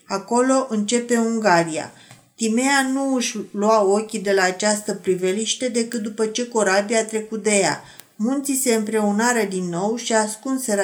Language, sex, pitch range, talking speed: Romanian, female, 200-235 Hz, 145 wpm